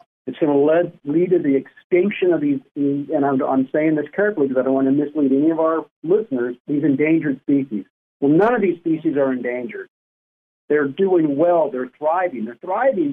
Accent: American